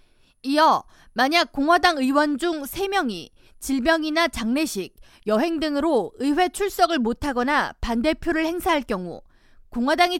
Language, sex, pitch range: Korean, female, 245-335 Hz